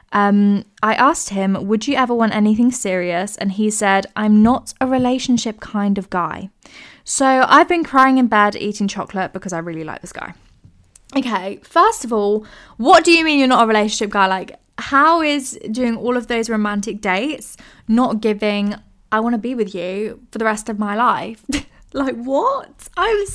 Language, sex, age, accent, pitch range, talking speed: English, female, 10-29, British, 200-260 Hz, 190 wpm